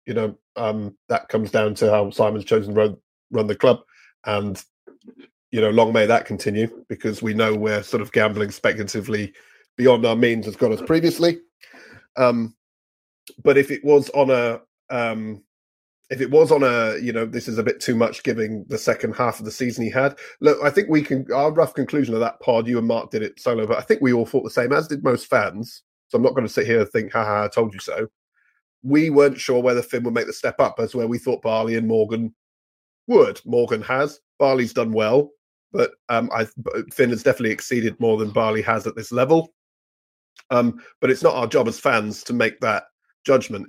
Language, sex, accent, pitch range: English, male, British, 105-130 Hz